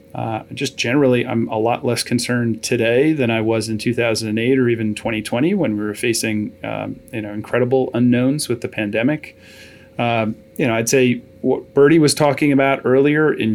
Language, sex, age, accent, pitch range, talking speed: English, male, 40-59, American, 115-130 Hz, 180 wpm